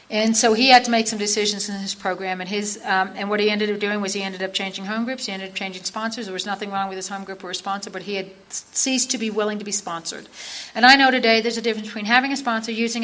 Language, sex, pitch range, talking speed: English, female, 200-275 Hz, 300 wpm